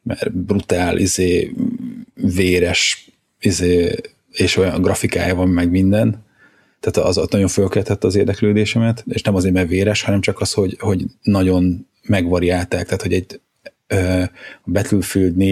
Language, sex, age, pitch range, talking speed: Hungarian, male, 30-49, 90-105 Hz, 130 wpm